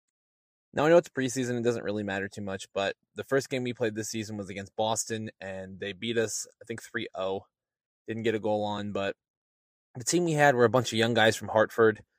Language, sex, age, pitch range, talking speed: English, male, 20-39, 110-125 Hz, 235 wpm